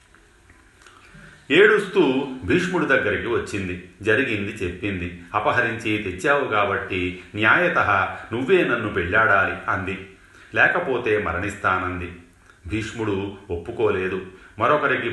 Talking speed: 75 wpm